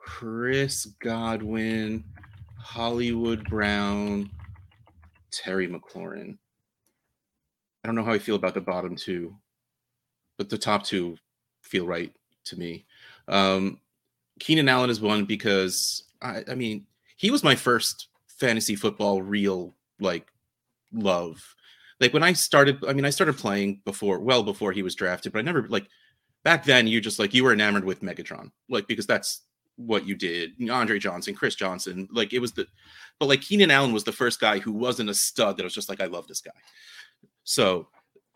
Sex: male